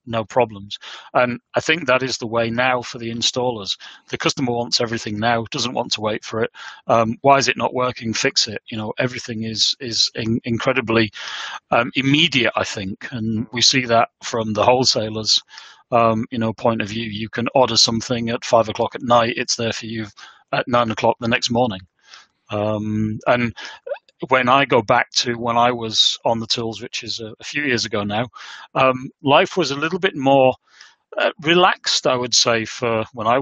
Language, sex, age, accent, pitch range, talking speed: English, male, 30-49, British, 110-125 Hz, 200 wpm